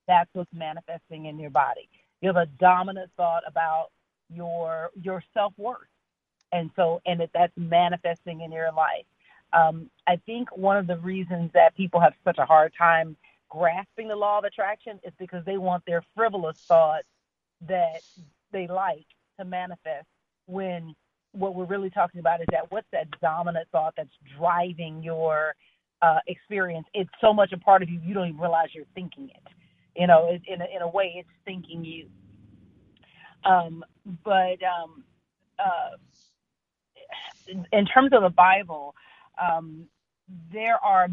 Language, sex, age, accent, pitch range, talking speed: English, female, 40-59, American, 165-190 Hz, 160 wpm